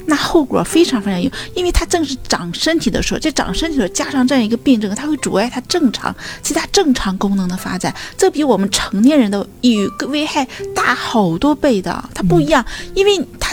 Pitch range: 225-315 Hz